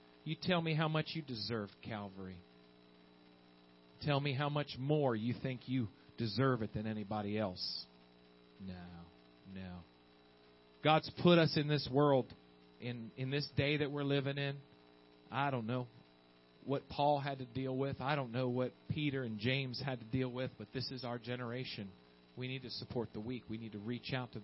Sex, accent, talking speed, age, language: male, American, 180 wpm, 40-59, English